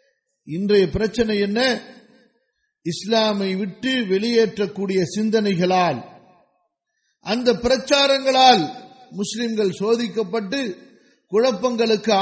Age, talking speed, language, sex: 50-69, 60 wpm, English, male